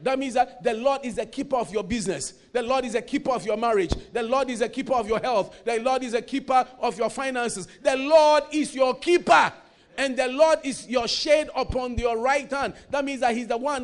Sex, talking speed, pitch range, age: male, 245 wpm, 250-290 Hz, 50-69